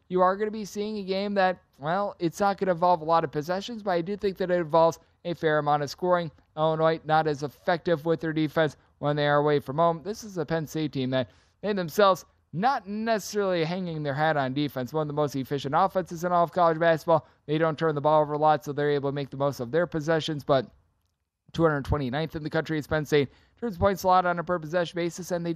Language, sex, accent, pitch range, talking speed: English, male, American, 145-180 Hz, 255 wpm